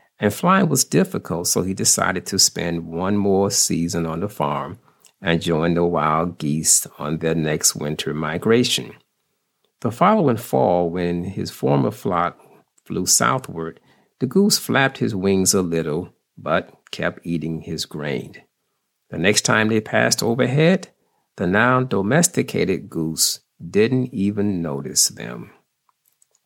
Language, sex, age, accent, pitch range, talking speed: English, male, 50-69, American, 85-130 Hz, 135 wpm